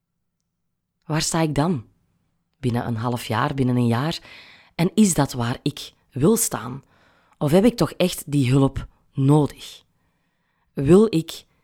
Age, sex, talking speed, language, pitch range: 20-39, female, 145 wpm, Dutch, 135-180 Hz